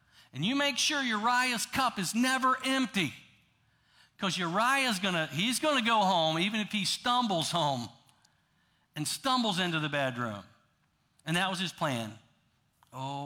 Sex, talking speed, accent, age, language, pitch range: male, 145 wpm, American, 50-69, English, 125-175 Hz